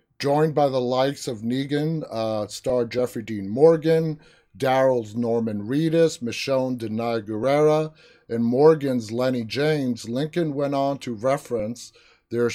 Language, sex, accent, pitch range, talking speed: English, male, American, 120-150 Hz, 135 wpm